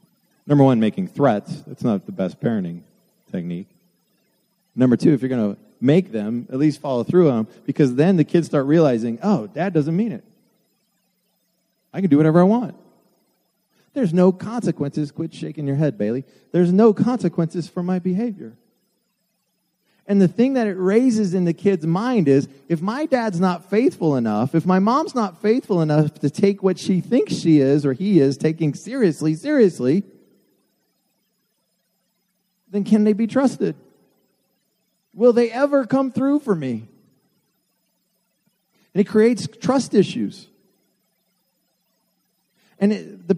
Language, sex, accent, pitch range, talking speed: English, male, American, 160-215 Hz, 150 wpm